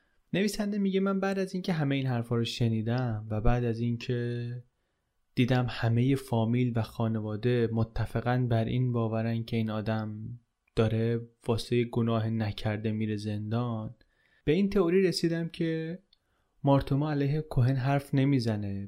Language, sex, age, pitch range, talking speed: Persian, male, 20-39, 115-140 Hz, 135 wpm